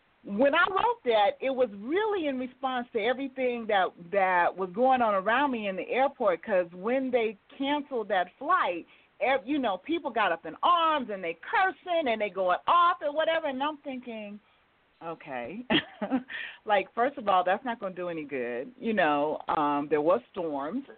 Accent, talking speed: American, 185 wpm